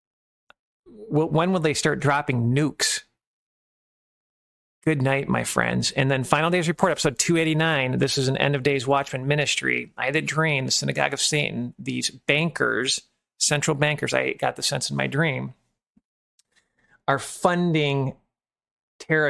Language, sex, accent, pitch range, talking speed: English, male, American, 125-155 Hz, 150 wpm